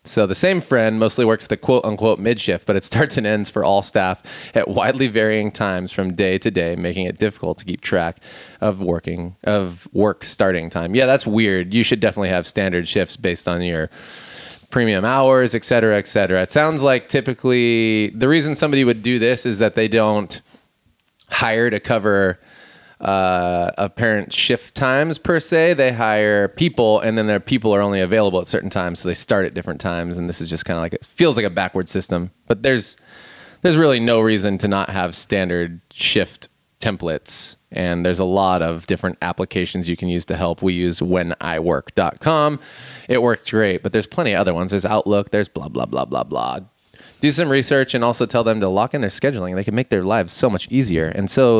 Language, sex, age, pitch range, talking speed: English, male, 30-49, 90-120 Hz, 205 wpm